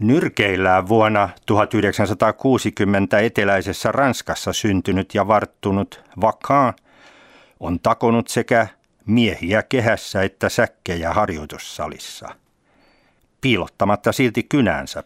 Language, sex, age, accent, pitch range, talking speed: Finnish, male, 50-69, native, 90-115 Hz, 80 wpm